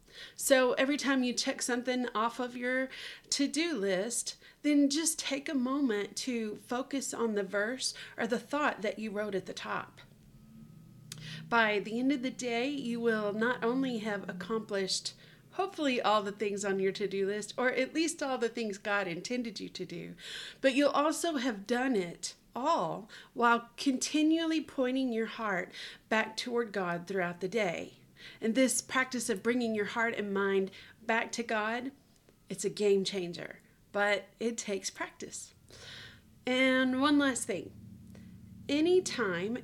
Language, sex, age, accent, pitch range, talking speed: English, female, 40-59, American, 200-260 Hz, 160 wpm